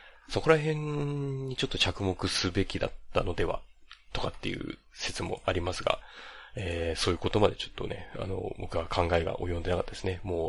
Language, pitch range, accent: Japanese, 85-105 Hz, native